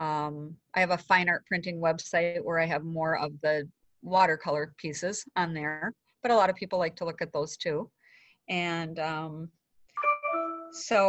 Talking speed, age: 175 wpm, 40-59